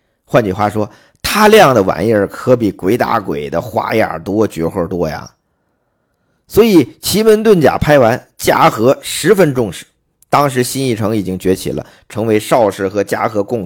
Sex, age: male, 50-69